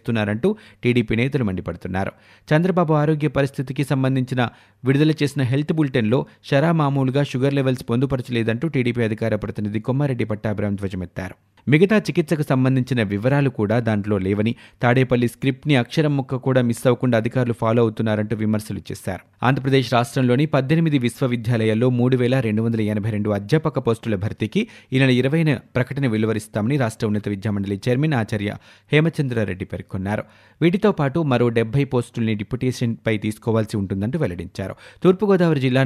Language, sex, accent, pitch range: Telugu, male, native, 110-135 Hz